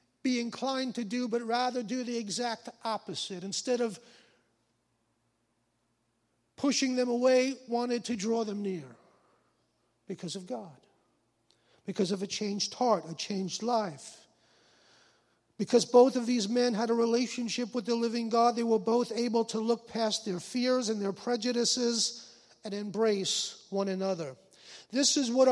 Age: 50-69